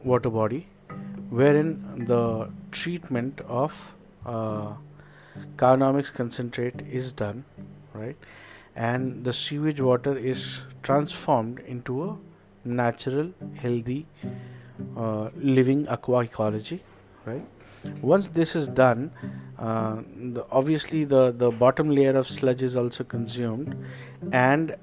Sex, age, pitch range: male, 50-69, 120-145 Hz